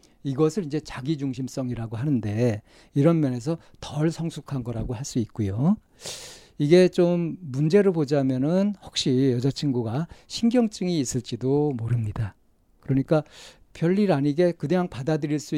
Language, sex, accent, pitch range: Korean, male, native, 120-160 Hz